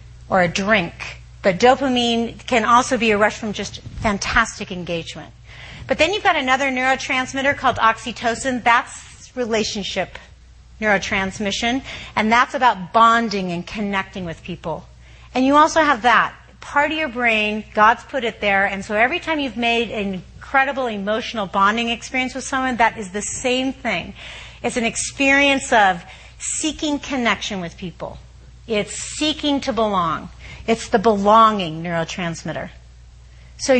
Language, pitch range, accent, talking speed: English, 190-255 Hz, American, 145 wpm